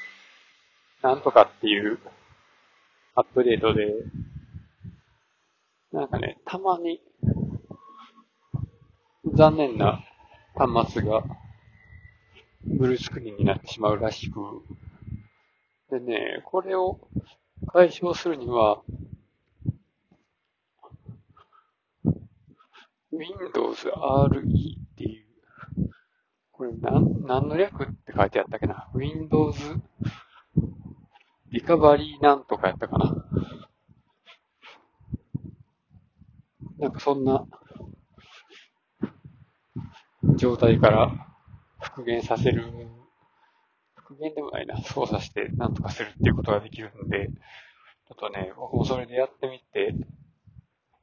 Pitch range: 115-170 Hz